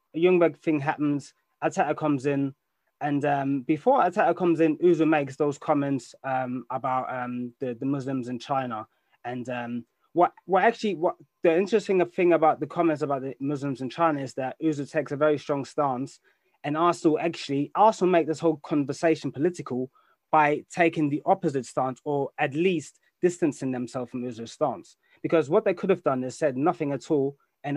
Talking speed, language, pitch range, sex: 180 wpm, English, 140-165 Hz, male